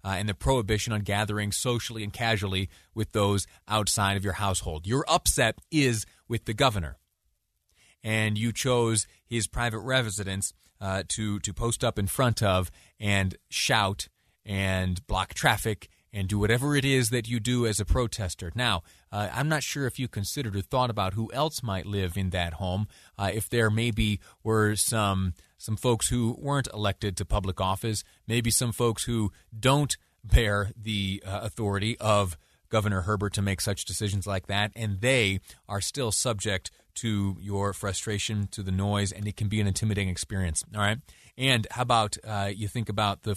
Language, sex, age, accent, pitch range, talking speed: English, male, 30-49, American, 95-115 Hz, 180 wpm